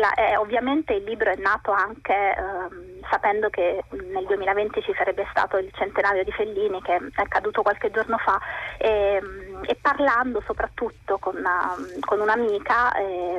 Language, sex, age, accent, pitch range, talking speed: Italian, female, 20-39, native, 195-250 Hz, 165 wpm